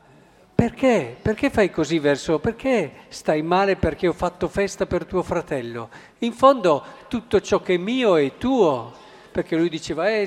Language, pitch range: Italian, 170-215 Hz